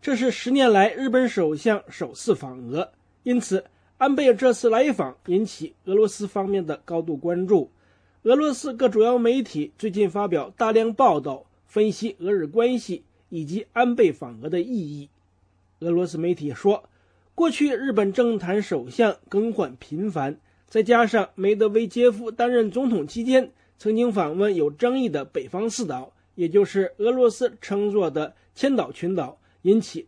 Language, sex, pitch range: English, male, 170-245 Hz